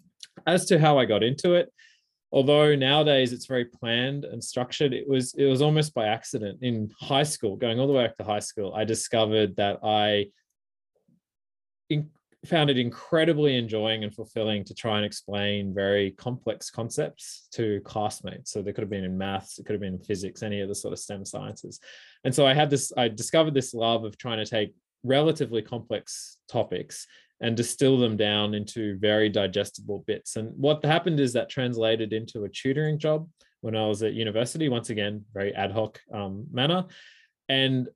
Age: 20-39